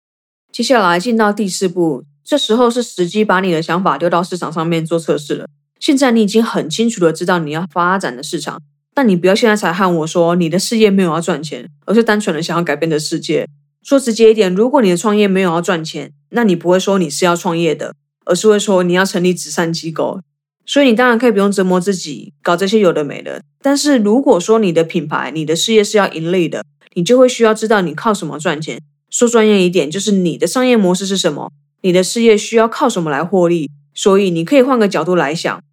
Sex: female